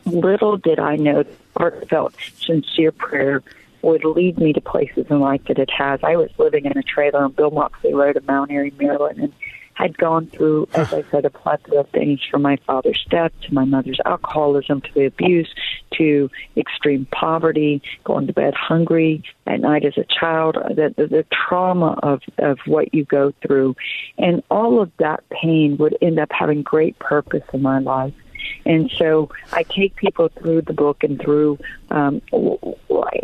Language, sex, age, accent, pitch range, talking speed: English, female, 50-69, American, 145-170 Hz, 180 wpm